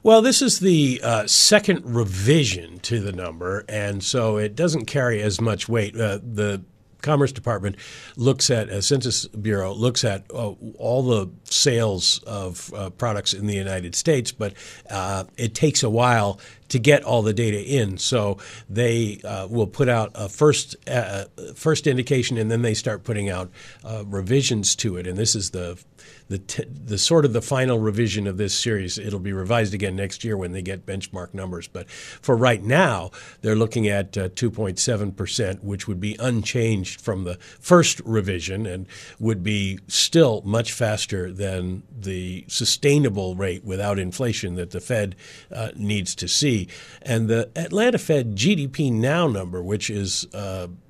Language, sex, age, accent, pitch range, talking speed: English, male, 50-69, American, 100-125 Hz, 170 wpm